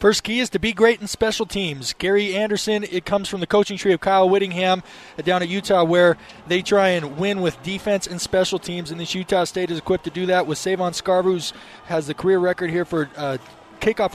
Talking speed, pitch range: 225 wpm, 170-195 Hz